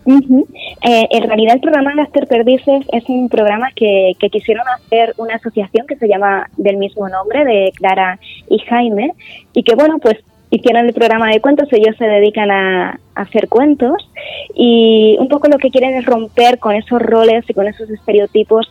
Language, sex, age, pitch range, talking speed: Spanish, female, 20-39, 200-240 Hz, 185 wpm